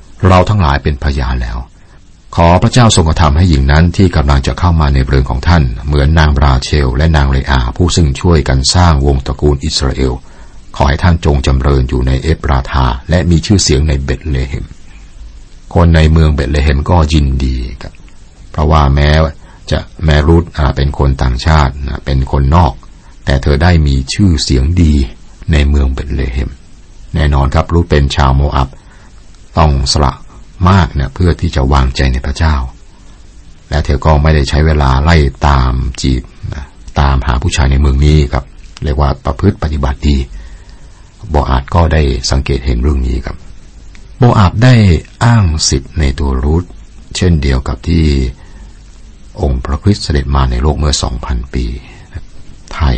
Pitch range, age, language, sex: 70-85 Hz, 60-79, Thai, male